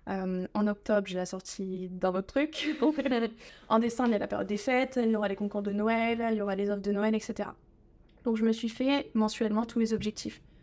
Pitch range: 200-235 Hz